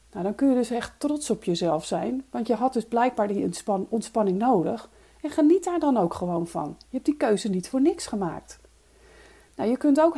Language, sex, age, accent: Dutch, female, 40-59, Dutch